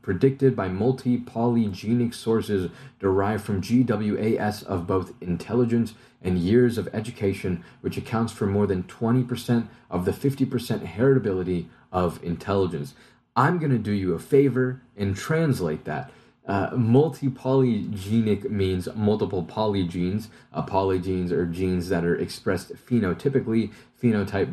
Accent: American